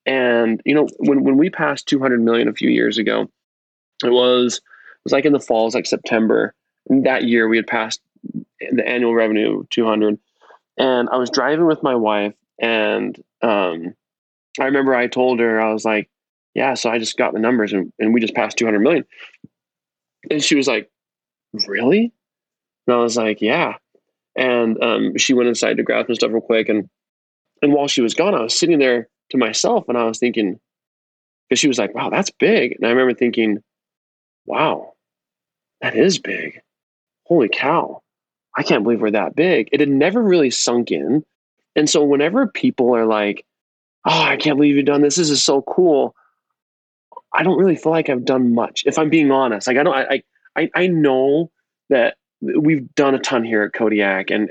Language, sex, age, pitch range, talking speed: English, male, 20-39, 110-145 Hz, 190 wpm